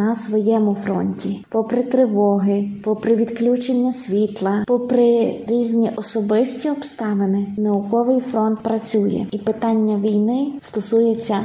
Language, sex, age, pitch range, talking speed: Ukrainian, female, 20-39, 205-235 Hz, 100 wpm